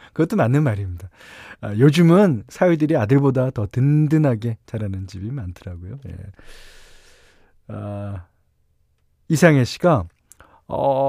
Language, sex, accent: Korean, male, native